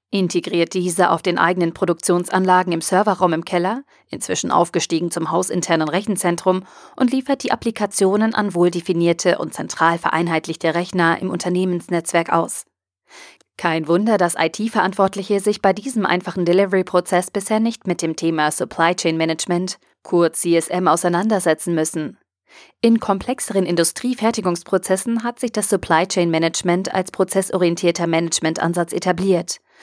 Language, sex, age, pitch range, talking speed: German, female, 30-49, 170-200 Hz, 125 wpm